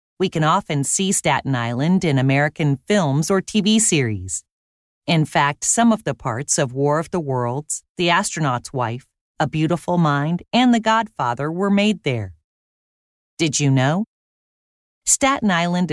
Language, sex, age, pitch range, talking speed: Slovak, female, 40-59, 130-200 Hz, 150 wpm